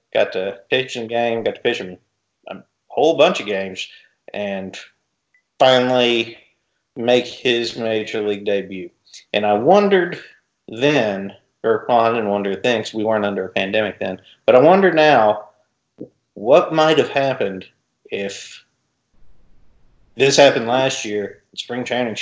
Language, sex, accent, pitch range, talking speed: English, male, American, 105-145 Hz, 140 wpm